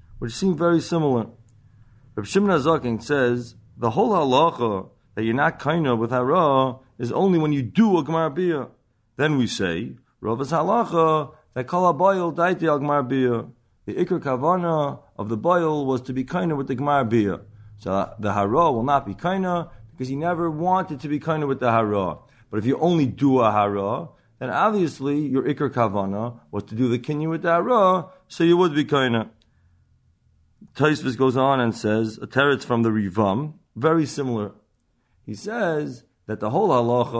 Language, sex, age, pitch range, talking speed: English, male, 30-49, 115-160 Hz, 175 wpm